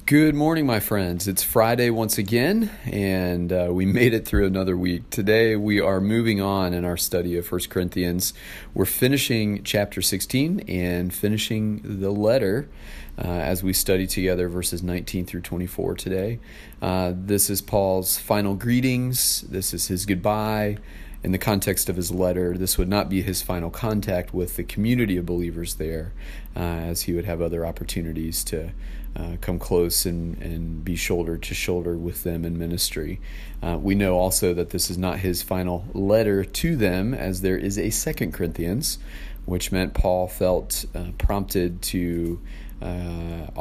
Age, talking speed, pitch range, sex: 40-59, 165 wpm, 85-100 Hz, male